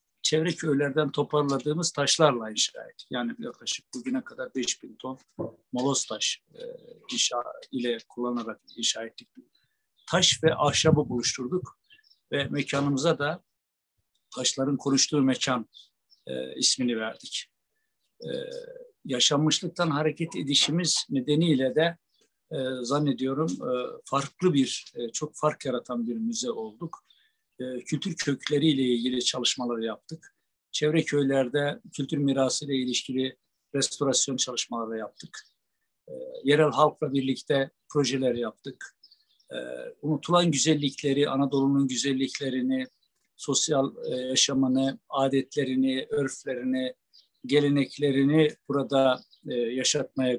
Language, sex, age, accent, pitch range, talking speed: Turkish, male, 60-79, native, 130-160 Hz, 100 wpm